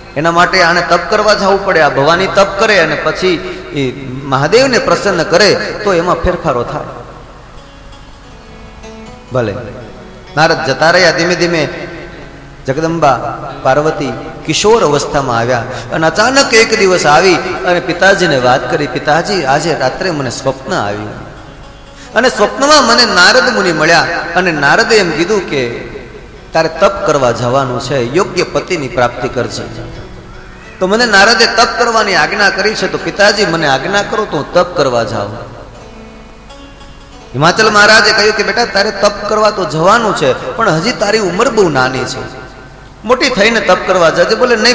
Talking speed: 105 wpm